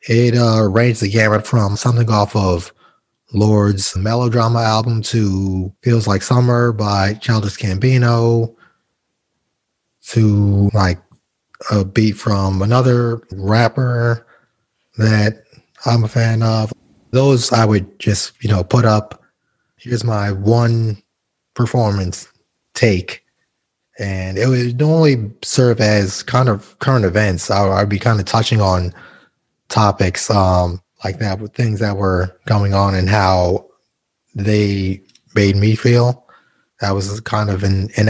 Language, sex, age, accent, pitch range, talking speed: English, male, 30-49, American, 100-115 Hz, 130 wpm